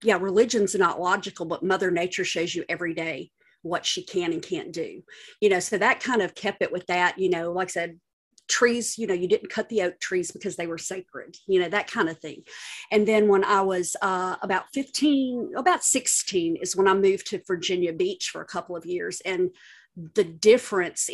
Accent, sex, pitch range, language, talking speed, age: American, female, 175-220 Hz, English, 215 wpm, 40-59